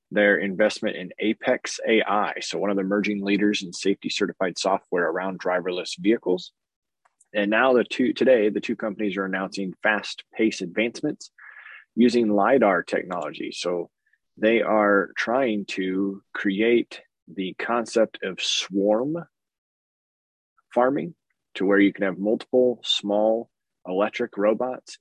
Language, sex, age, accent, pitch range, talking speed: English, male, 20-39, American, 95-110 Hz, 130 wpm